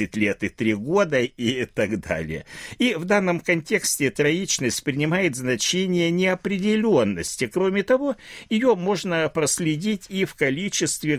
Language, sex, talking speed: Russian, male, 125 wpm